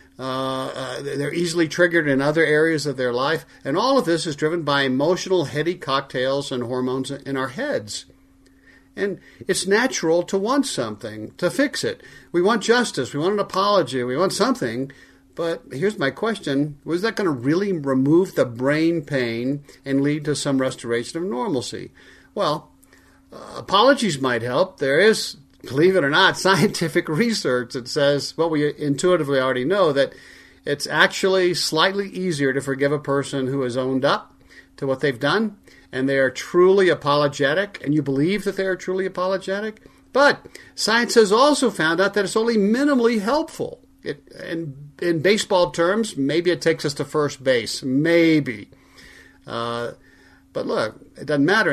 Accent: American